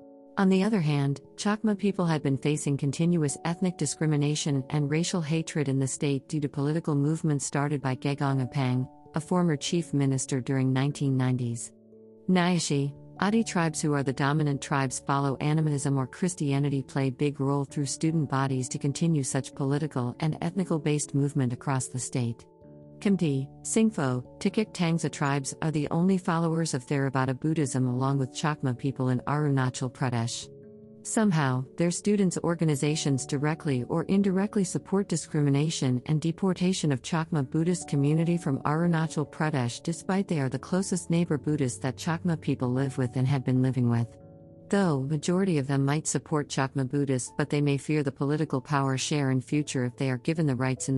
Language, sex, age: English, female, 50-69